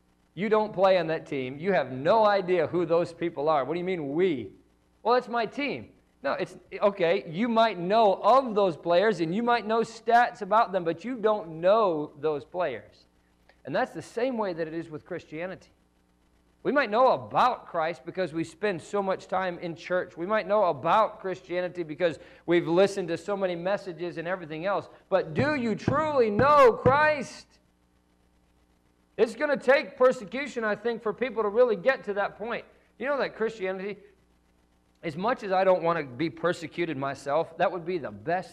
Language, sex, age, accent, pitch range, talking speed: English, male, 50-69, American, 120-200 Hz, 190 wpm